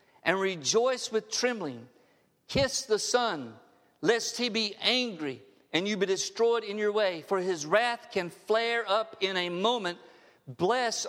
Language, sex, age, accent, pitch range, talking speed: English, male, 50-69, American, 160-215 Hz, 150 wpm